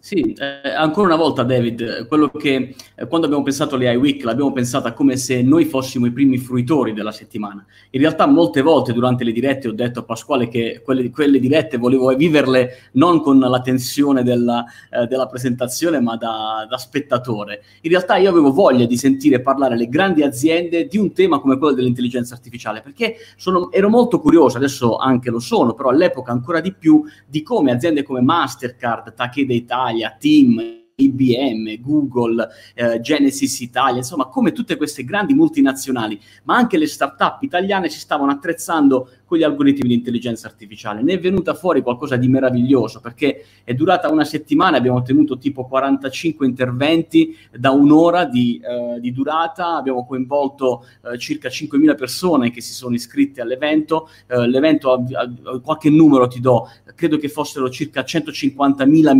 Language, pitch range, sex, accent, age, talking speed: Italian, 120-155 Hz, male, native, 30-49, 165 wpm